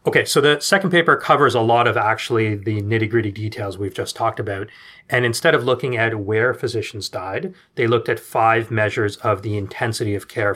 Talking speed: 205 wpm